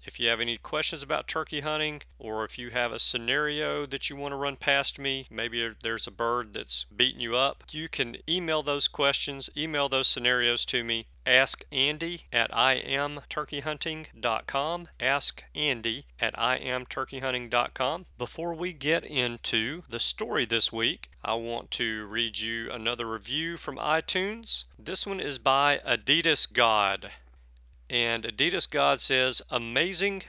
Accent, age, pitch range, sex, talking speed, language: American, 40-59, 115-145 Hz, male, 145 wpm, English